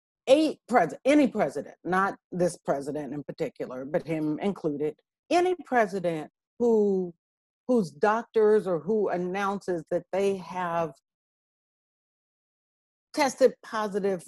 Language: English